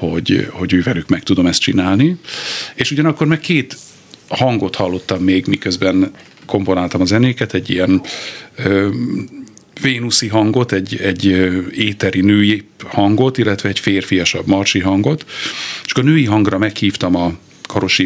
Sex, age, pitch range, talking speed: male, 50-69, 95-120 Hz, 135 wpm